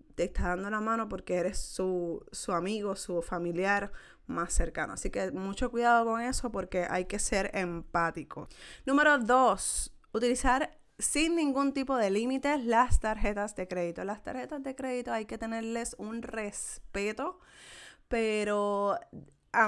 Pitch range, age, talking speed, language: 195-235 Hz, 20-39, 145 wpm, Spanish